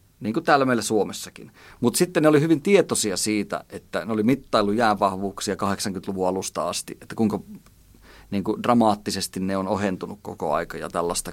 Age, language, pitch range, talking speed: 30-49, Finnish, 100-120 Hz, 170 wpm